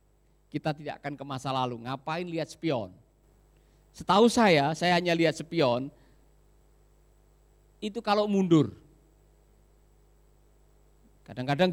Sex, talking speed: male, 95 wpm